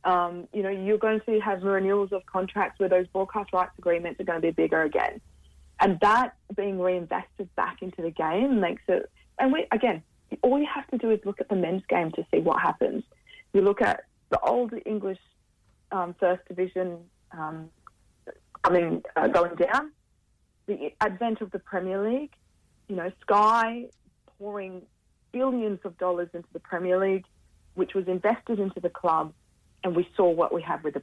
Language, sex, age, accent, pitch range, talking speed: English, female, 30-49, Australian, 175-220 Hz, 180 wpm